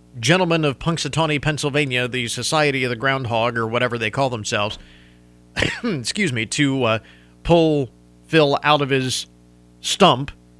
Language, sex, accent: English, male, American